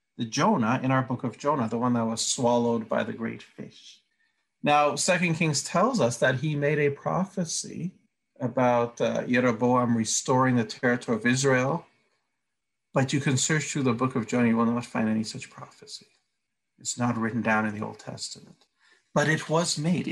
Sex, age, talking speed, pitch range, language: male, 50-69, 180 wpm, 120-150 Hz, English